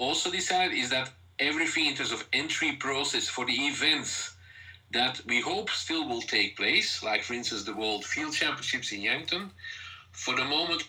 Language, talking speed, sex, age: English, 175 wpm, male, 50-69